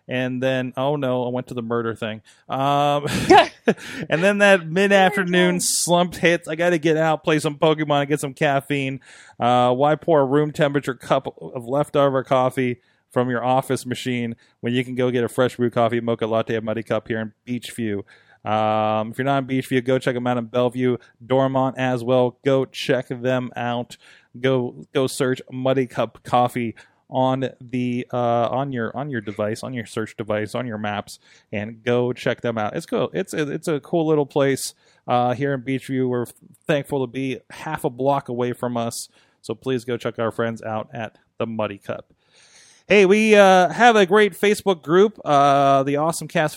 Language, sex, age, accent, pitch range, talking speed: English, male, 20-39, American, 120-150 Hz, 190 wpm